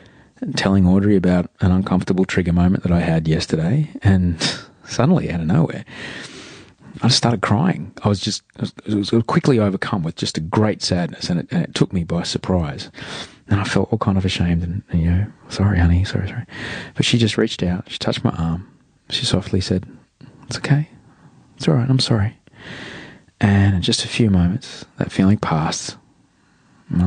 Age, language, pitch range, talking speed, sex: 30-49, English, 90-120 Hz, 190 wpm, male